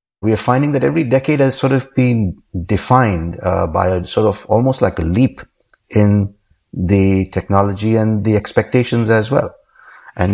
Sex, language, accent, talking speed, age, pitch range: male, English, Indian, 170 wpm, 50-69, 90-110 Hz